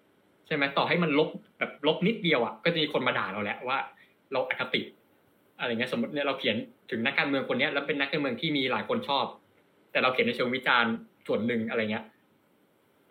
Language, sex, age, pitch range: Thai, male, 20-39, 115-170 Hz